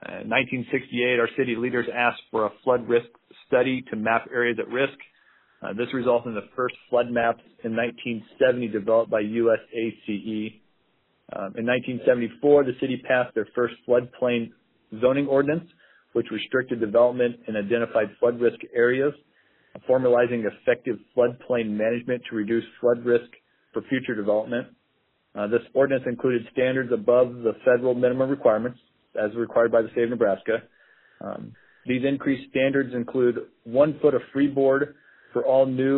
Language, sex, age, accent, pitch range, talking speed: English, male, 40-59, American, 115-135 Hz, 145 wpm